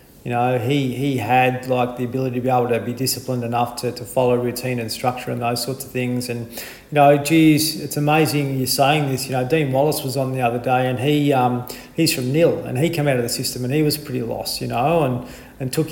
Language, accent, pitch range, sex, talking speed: English, Australian, 125-145 Hz, male, 255 wpm